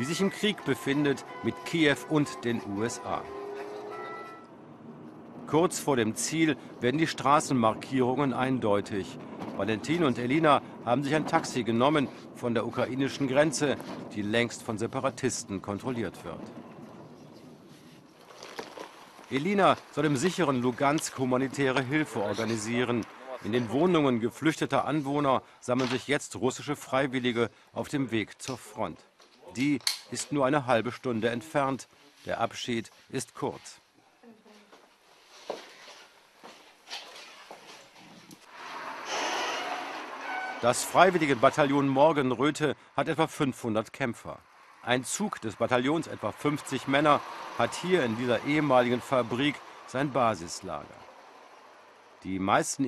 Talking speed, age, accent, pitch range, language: 110 wpm, 50-69, German, 115-145 Hz, German